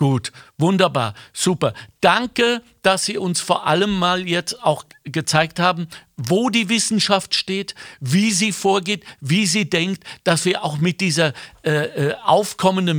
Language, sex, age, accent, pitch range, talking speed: German, male, 60-79, German, 160-195 Hz, 145 wpm